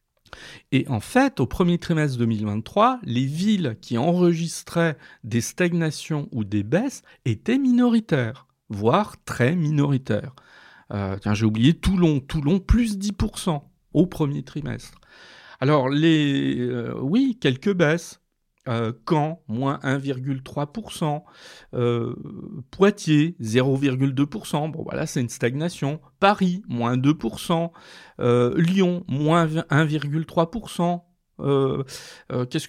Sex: male